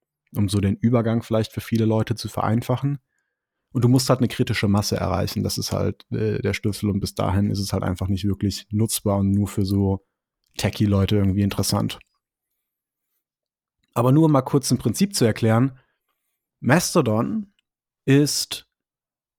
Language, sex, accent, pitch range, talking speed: German, male, German, 100-130 Hz, 165 wpm